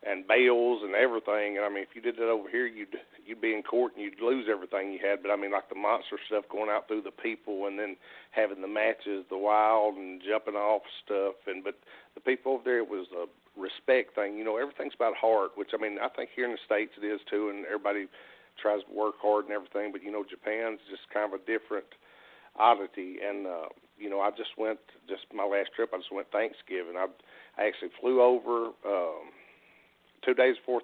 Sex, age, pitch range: male, 50-69, 100-110 Hz